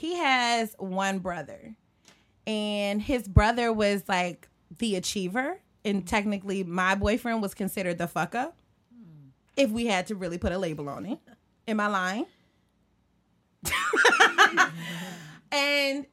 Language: English